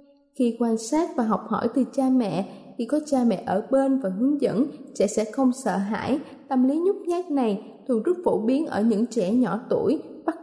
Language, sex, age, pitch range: Thai, female, 20-39, 225-280 Hz